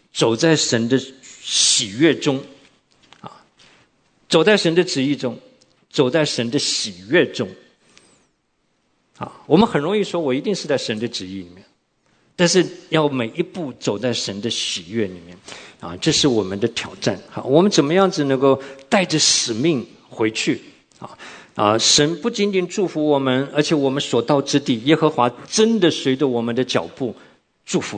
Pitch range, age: 115-150 Hz, 50-69